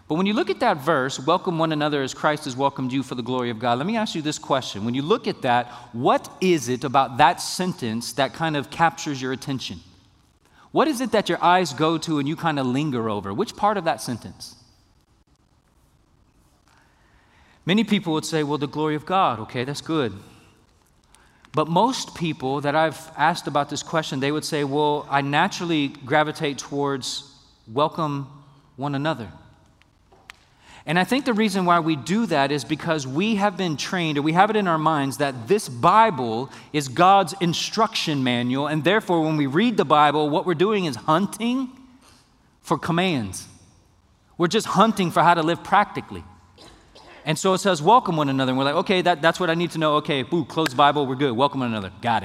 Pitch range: 130-180 Hz